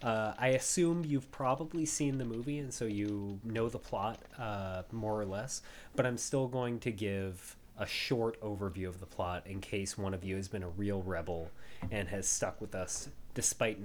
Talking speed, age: 200 wpm, 20-39